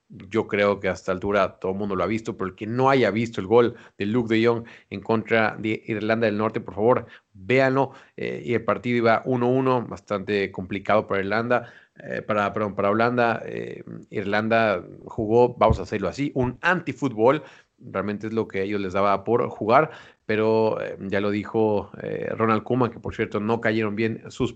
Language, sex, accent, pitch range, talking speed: Spanish, male, Mexican, 105-125 Hz, 195 wpm